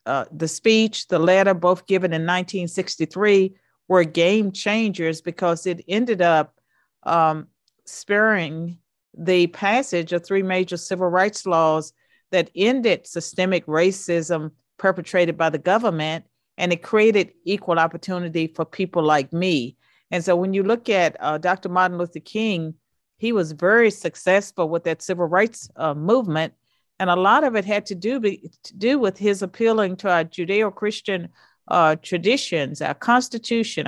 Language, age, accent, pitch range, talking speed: English, 40-59, American, 170-205 Hz, 150 wpm